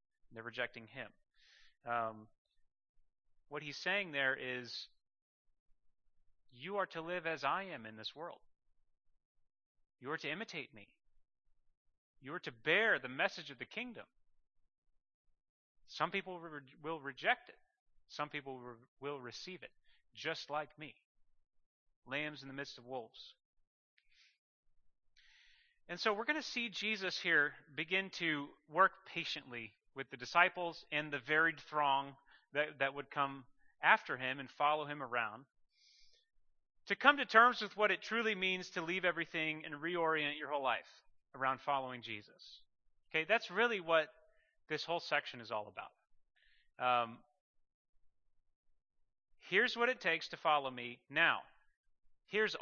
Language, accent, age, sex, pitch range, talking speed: English, American, 30-49, male, 135-185 Hz, 140 wpm